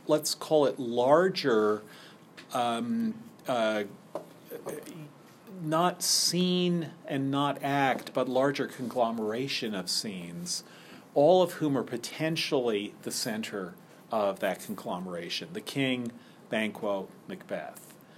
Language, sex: English, male